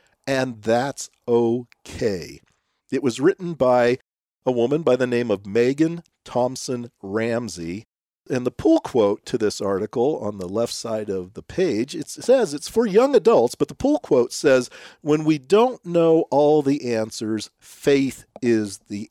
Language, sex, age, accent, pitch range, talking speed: English, male, 50-69, American, 115-170 Hz, 160 wpm